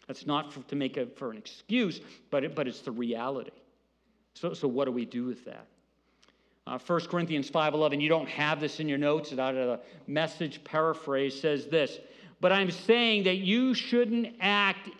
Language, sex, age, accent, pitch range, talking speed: English, male, 50-69, American, 155-205 Hz, 195 wpm